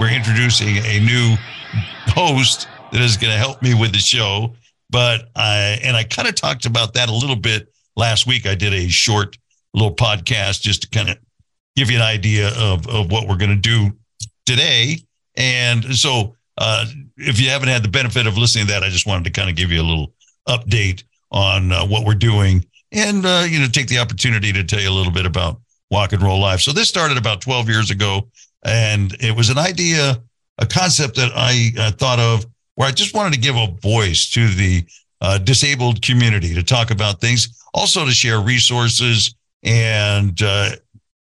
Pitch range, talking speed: 105-130 Hz, 200 wpm